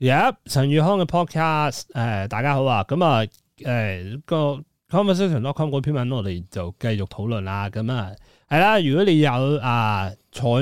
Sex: male